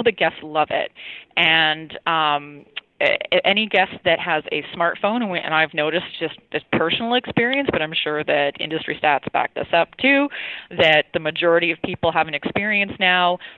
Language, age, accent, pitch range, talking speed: English, 20-39, American, 155-190 Hz, 170 wpm